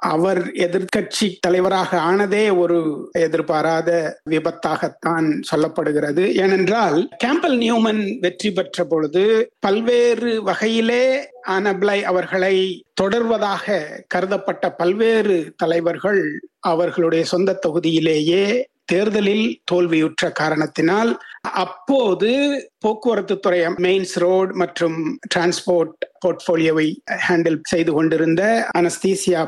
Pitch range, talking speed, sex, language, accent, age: 165-210 Hz, 75 wpm, male, Tamil, native, 60-79